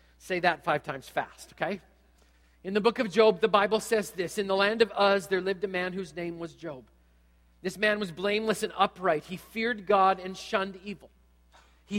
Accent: American